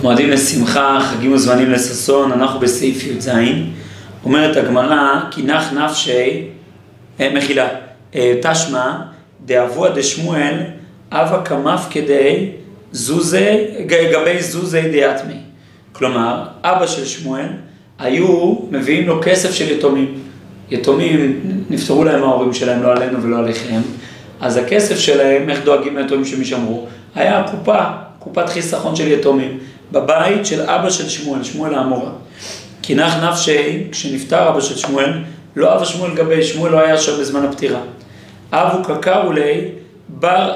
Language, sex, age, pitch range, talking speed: Hebrew, male, 40-59, 130-160 Hz, 125 wpm